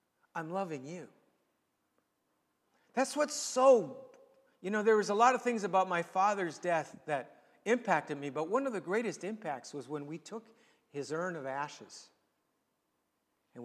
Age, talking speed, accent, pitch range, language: 60-79, 160 wpm, American, 135-205 Hz, English